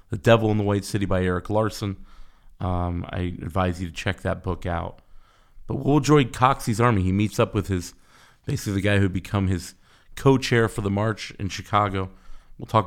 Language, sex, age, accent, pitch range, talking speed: English, male, 30-49, American, 90-110 Hz, 195 wpm